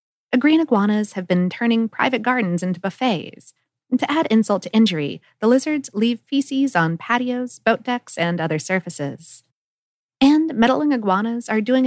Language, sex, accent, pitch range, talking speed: English, female, American, 180-255 Hz, 160 wpm